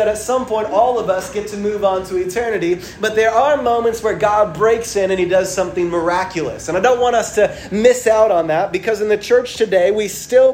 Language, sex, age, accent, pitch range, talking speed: English, male, 30-49, American, 185-220 Hz, 245 wpm